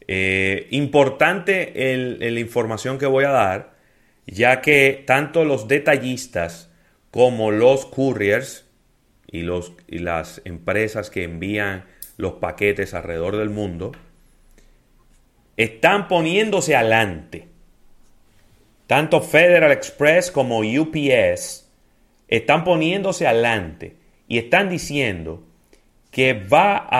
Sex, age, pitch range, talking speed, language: male, 30-49, 105-150 Hz, 100 wpm, Spanish